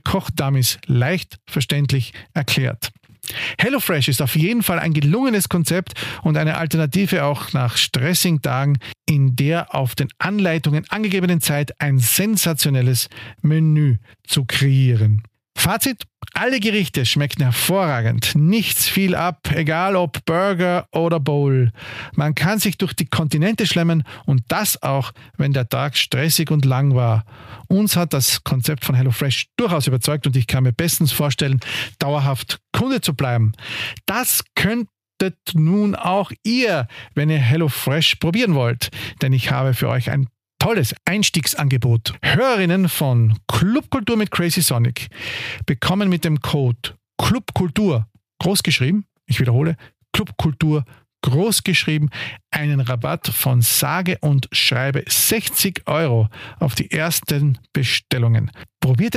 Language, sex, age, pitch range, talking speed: German, male, 40-59, 125-170 Hz, 130 wpm